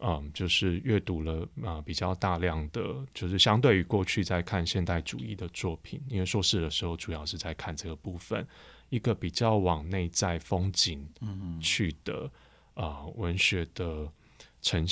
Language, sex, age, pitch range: Chinese, male, 20-39, 80-100 Hz